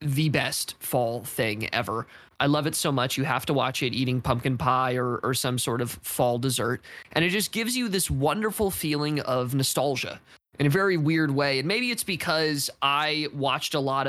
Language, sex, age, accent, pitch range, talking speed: English, male, 20-39, American, 125-145 Hz, 205 wpm